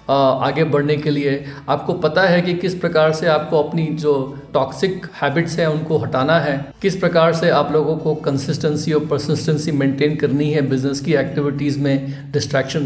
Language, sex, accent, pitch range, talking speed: Hindi, male, native, 140-170 Hz, 175 wpm